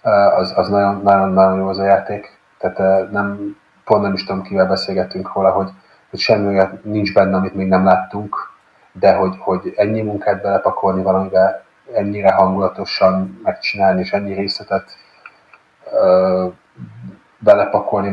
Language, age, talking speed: Hungarian, 30-49, 130 wpm